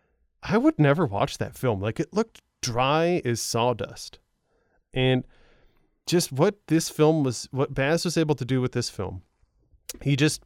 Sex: male